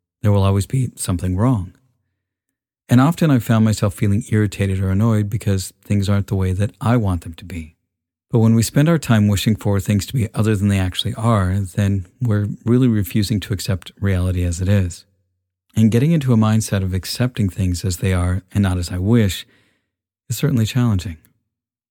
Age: 50-69